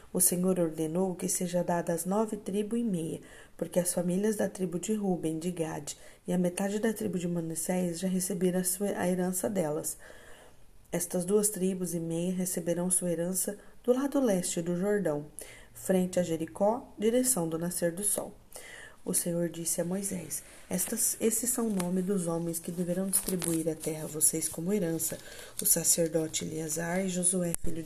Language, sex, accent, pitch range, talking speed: Portuguese, female, Brazilian, 165-190 Hz, 175 wpm